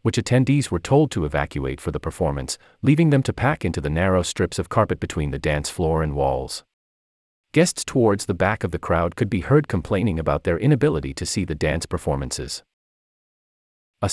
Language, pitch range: English, 75-120 Hz